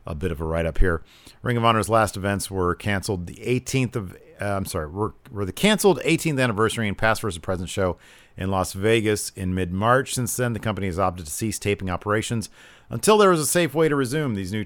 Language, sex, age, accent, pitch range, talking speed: English, male, 40-59, American, 95-125 Hz, 230 wpm